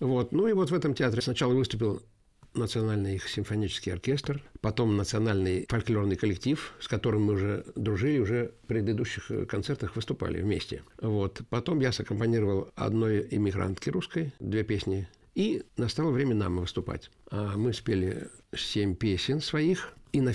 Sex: male